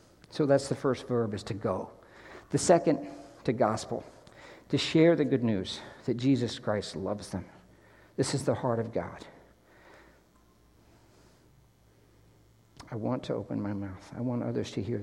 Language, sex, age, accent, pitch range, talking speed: English, male, 60-79, American, 105-125 Hz, 155 wpm